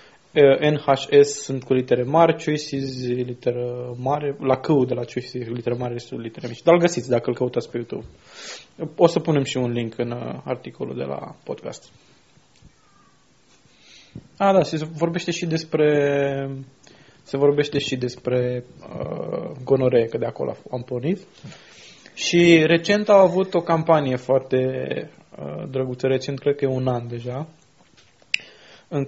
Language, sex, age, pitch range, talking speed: Romanian, male, 20-39, 125-155 Hz, 150 wpm